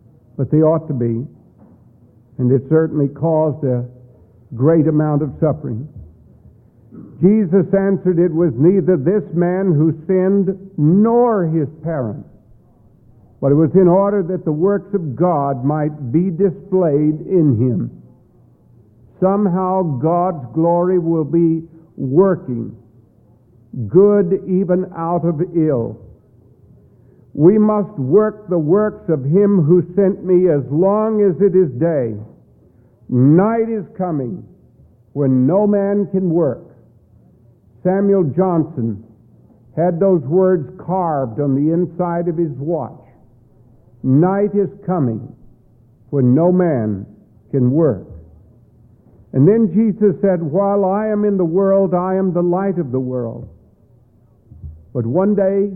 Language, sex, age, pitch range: English, male, 60-79, 125-185 Hz